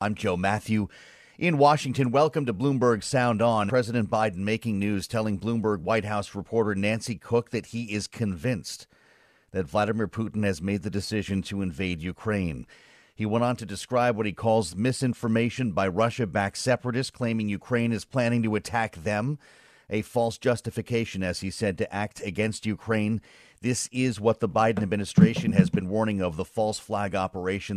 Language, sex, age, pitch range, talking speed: English, male, 40-59, 100-115 Hz, 170 wpm